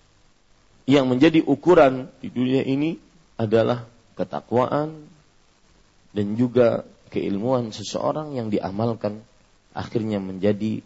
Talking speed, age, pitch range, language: 90 wpm, 40-59, 105-155 Hz, Malay